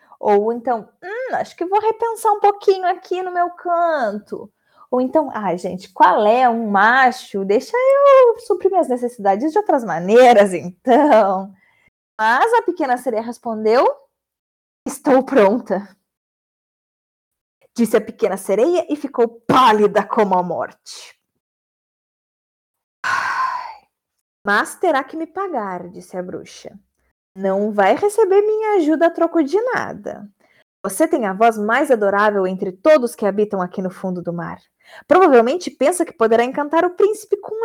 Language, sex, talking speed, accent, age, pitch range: Portuguese, female, 135 wpm, Brazilian, 20-39, 215-345 Hz